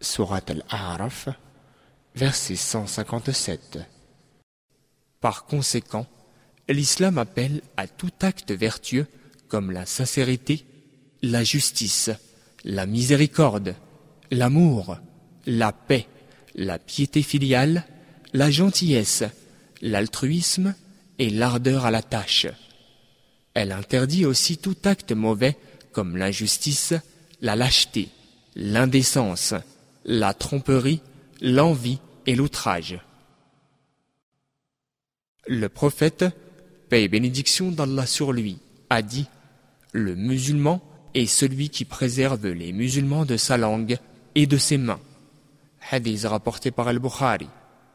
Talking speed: 100 wpm